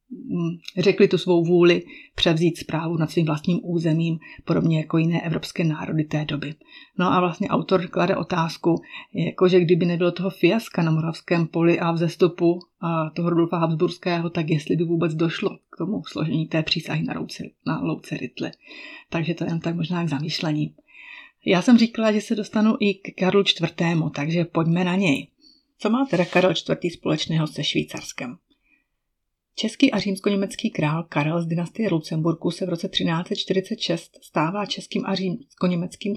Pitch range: 165-195 Hz